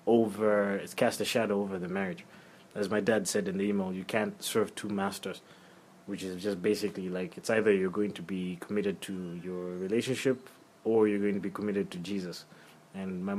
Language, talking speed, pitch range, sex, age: English, 200 wpm, 95-110 Hz, male, 20-39